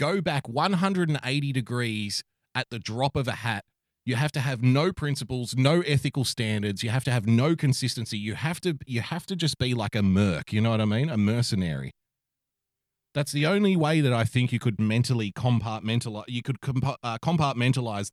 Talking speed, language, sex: 190 wpm, English, male